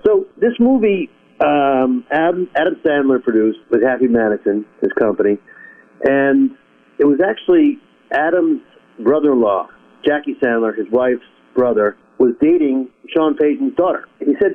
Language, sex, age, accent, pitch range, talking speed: English, male, 50-69, American, 125-175 Hz, 130 wpm